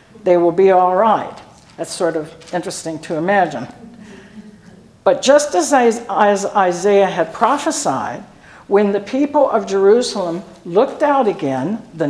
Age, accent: 60-79, American